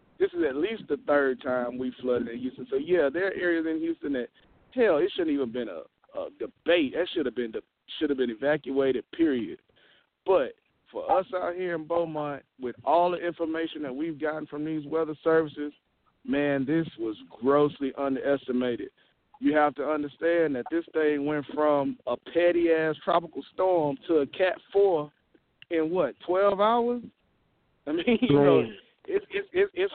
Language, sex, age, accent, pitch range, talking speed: English, male, 40-59, American, 140-195 Hz, 180 wpm